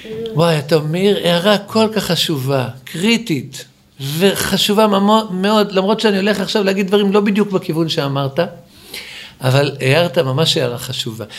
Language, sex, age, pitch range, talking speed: Hebrew, male, 50-69, 170-275 Hz, 135 wpm